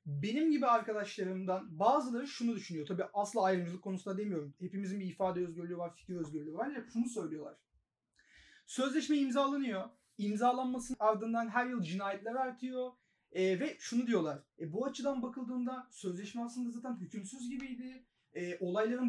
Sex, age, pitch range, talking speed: male, 30-49, 200-245 Hz, 140 wpm